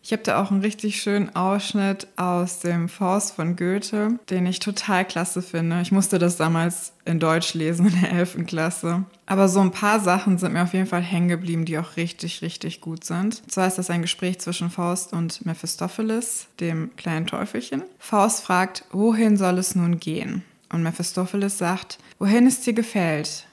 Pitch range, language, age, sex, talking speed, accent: 175-205 Hz, German, 20-39, female, 190 wpm, German